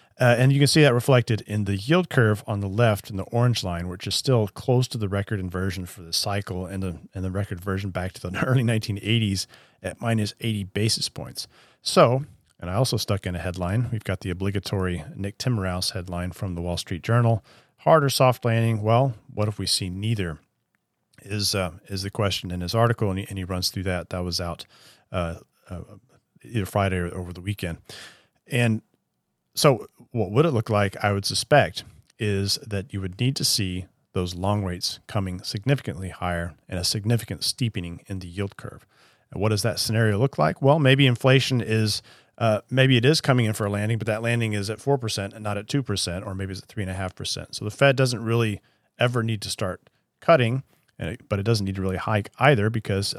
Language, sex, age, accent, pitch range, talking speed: English, male, 40-59, American, 95-120 Hz, 210 wpm